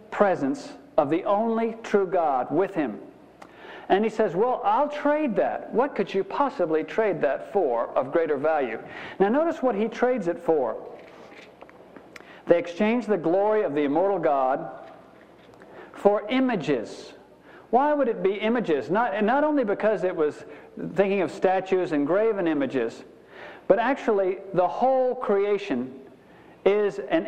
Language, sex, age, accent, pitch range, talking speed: English, male, 50-69, American, 190-235 Hz, 145 wpm